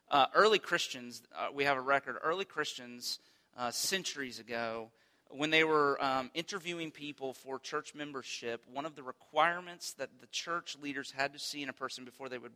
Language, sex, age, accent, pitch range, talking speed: English, male, 40-59, American, 125-170 Hz, 185 wpm